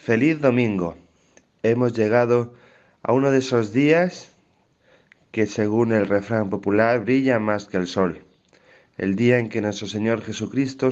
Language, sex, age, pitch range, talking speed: Spanish, male, 30-49, 105-135 Hz, 145 wpm